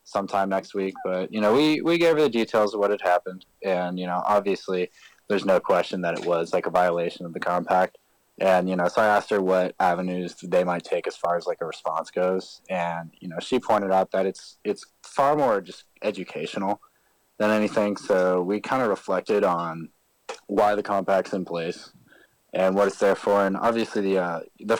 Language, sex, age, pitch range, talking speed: English, male, 20-39, 85-100 Hz, 210 wpm